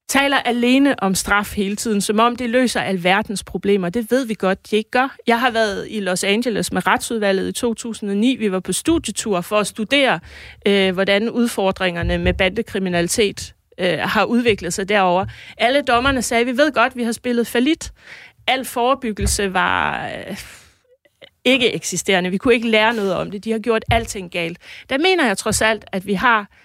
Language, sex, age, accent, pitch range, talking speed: Danish, female, 30-49, native, 190-235 Hz, 190 wpm